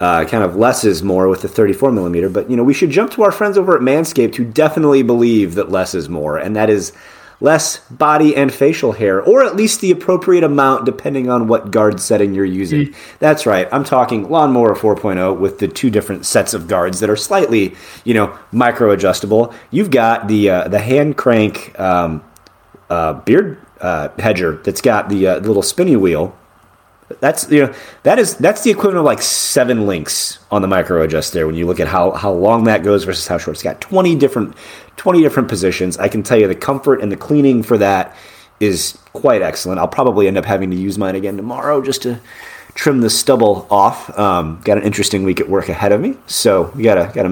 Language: English